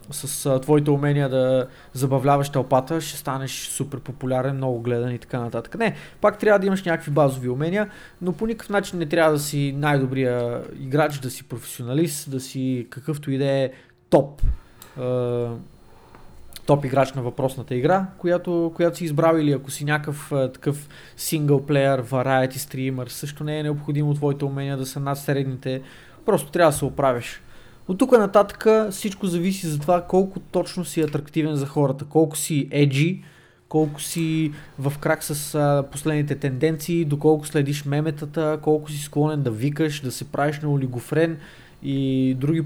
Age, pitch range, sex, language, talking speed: 20-39, 130-160 Hz, male, Bulgarian, 160 wpm